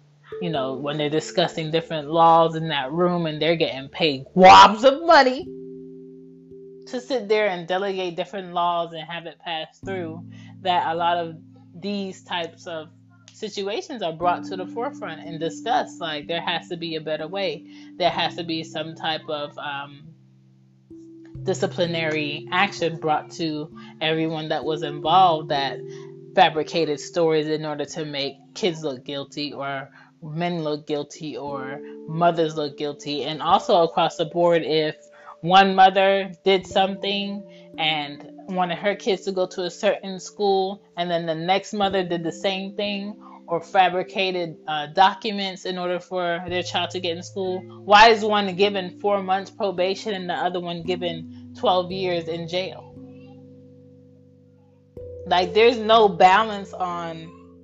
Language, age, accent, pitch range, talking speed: English, 20-39, American, 150-190 Hz, 155 wpm